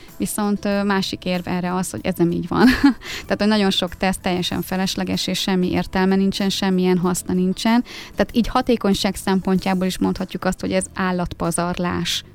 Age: 20-39